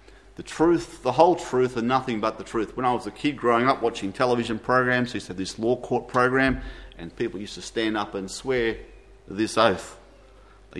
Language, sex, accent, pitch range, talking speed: English, male, Australian, 105-145 Hz, 205 wpm